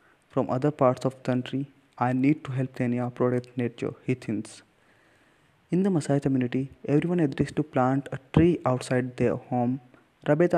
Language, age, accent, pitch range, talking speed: English, 20-39, Indian, 125-145 Hz, 165 wpm